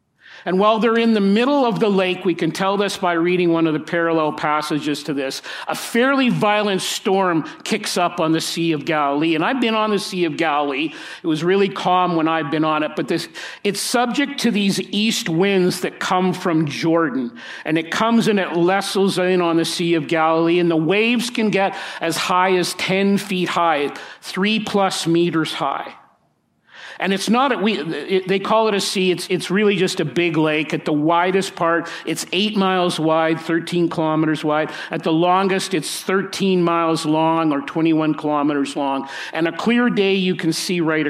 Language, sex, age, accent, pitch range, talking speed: English, male, 50-69, American, 160-200 Hz, 200 wpm